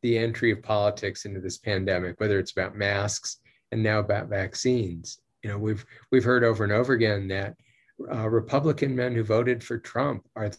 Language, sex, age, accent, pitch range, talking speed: English, male, 40-59, American, 105-135 Hz, 185 wpm